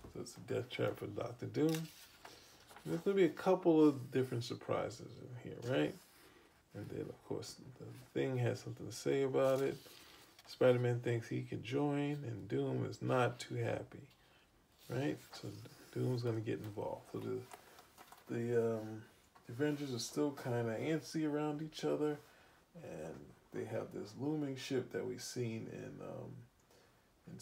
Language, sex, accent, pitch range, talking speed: English, male, American, 110-145 Hz, 165 wpm